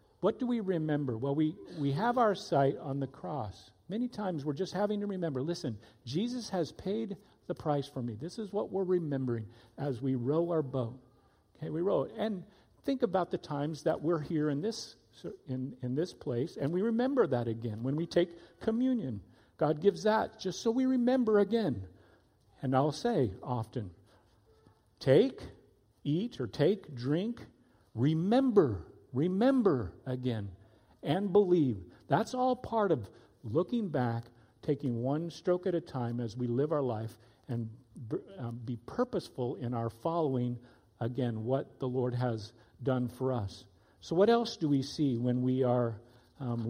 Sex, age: male, 50-69